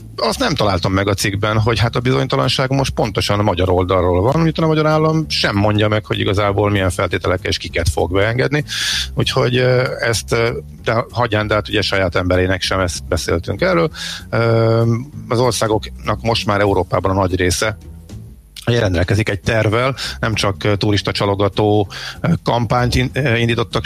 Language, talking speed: Hungarian, 155 wpm